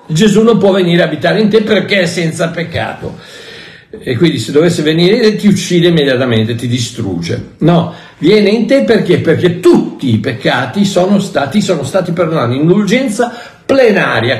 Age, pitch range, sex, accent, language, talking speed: 60-79, 140-215 Hz, male, native, Italian, 160 wpm